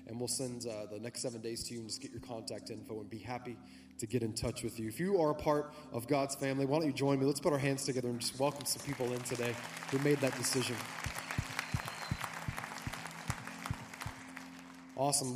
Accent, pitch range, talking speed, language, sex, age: American, 120-140 Hz, 215 wpm, English, male, 20-39